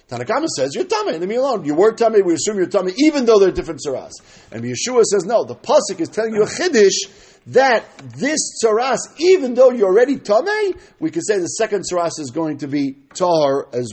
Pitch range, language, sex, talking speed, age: 165-250 Hz, English, male, 215 wpm, 50-69